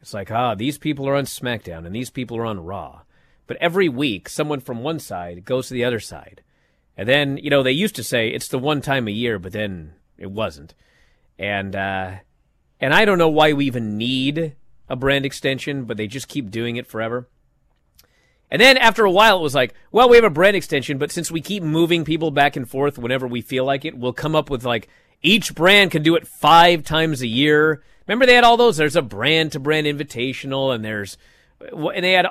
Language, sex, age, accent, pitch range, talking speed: English, male, 30-49, American, 120-165 Hz, 225 wpm